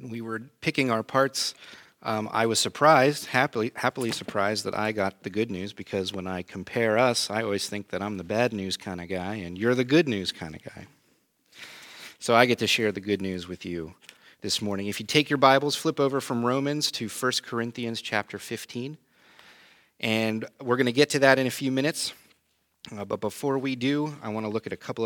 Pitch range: 100-130 Hz